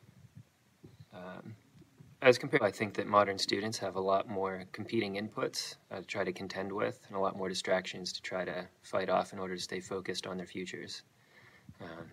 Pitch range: 95-105 Hz